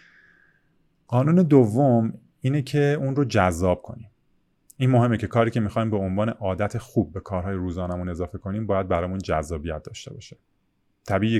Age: 30-49